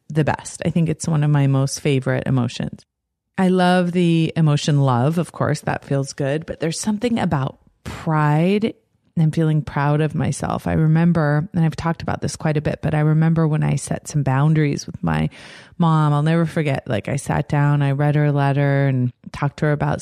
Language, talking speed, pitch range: English, 205 wpm, 140-160 Hz